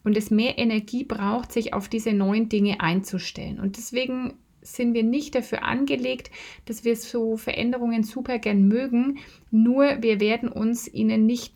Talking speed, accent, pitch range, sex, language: 160 wpm, German, 200-235 Hz, female, German